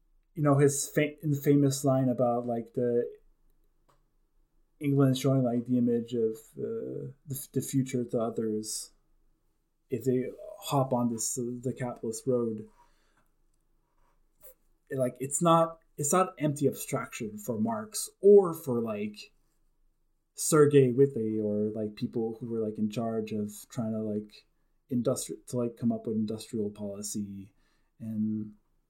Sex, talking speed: male, 135 wpm